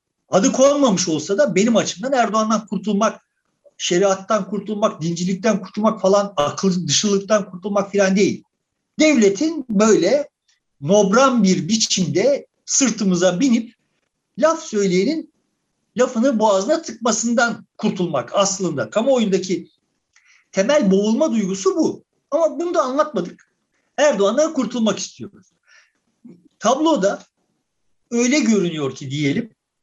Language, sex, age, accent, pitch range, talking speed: Turkish, male, 60-79, native, 195-290 Hz, 100 wpm